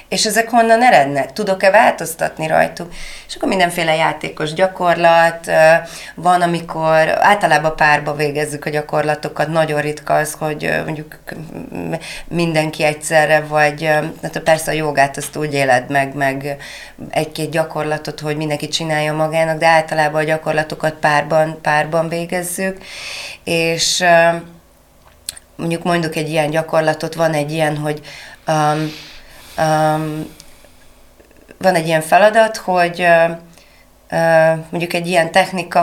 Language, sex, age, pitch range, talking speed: Hungarian, female, 30-49, 150-170 Hz, 120 wpm